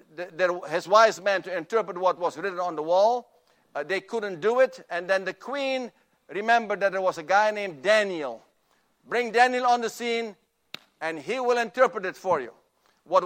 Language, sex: English, male